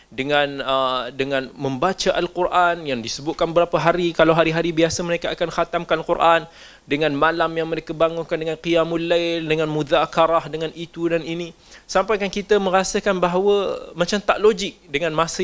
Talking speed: 155 wpm